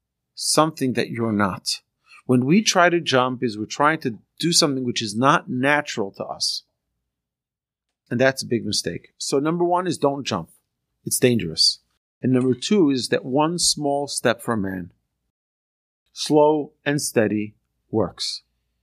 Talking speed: 155 wpm